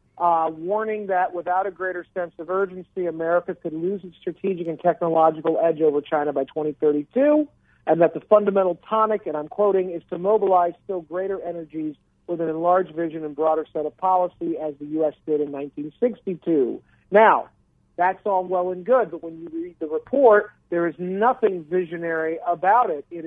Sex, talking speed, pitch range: male, 180 wpm, 160-195 Hz